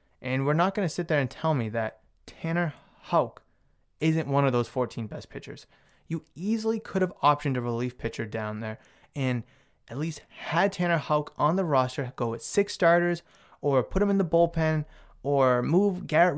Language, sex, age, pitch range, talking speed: English, male, 20-39, 125-170 Hz, 190 wpm